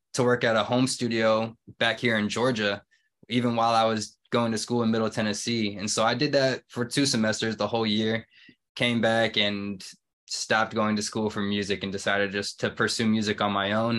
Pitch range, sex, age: 105-115 Hz, male, 20-39